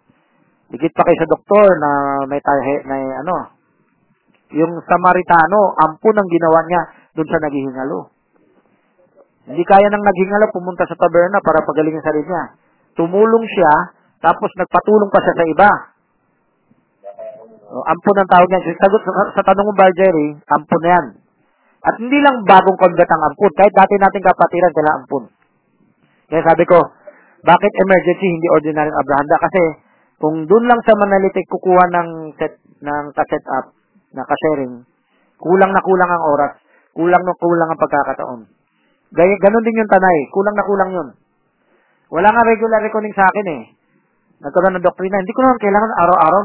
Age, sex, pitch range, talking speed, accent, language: 40-59, male, 155-200 Hz, 150 wpm, native, Filipino